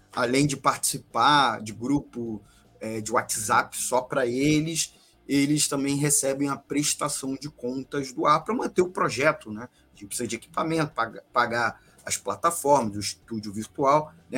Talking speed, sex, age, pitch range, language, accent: 150 wpm, male, 20-39, 120-150 Hz, Portuguese, Brazilian